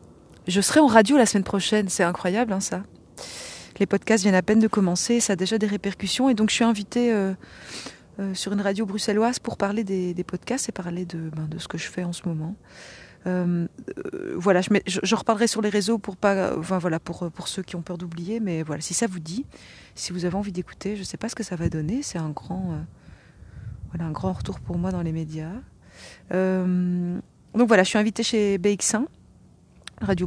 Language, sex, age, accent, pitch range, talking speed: French, female, 30-49, French, 175-215 Hz, 230 wpm